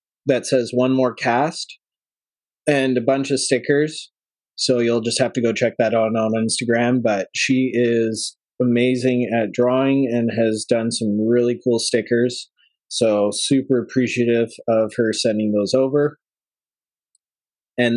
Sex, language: male, English